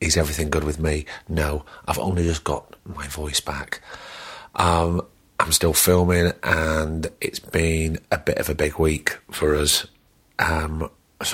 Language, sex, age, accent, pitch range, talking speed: English, male, 30-49, British, 80-90 Hz, 160 wpm